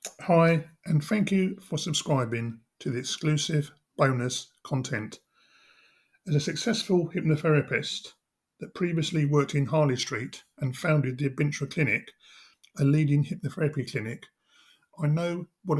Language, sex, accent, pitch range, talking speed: English, male, British, 130-155 Hz, 125 wpm